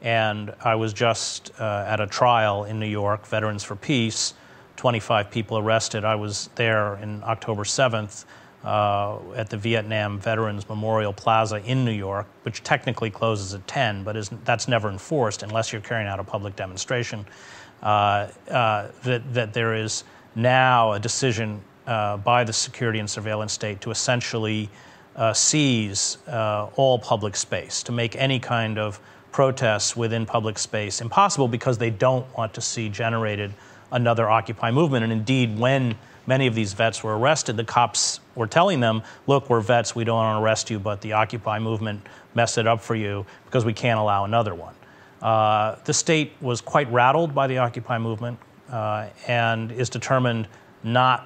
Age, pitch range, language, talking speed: 40-59, 105-120 Hz, English, 170 wpm